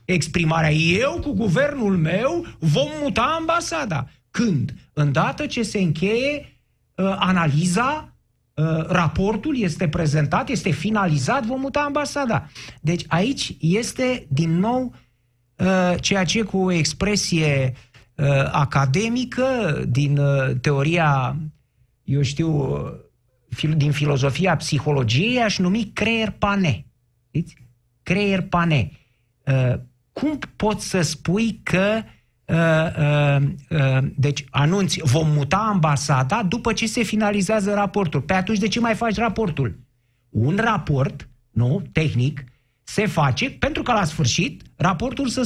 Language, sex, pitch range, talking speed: Romanian, male, 140-215 Hz, 110 wpm